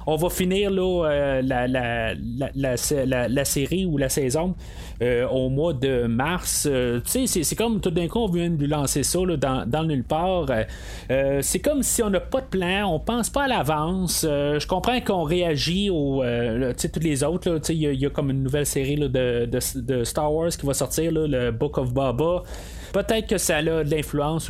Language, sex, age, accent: French, male, 30-49, Canadian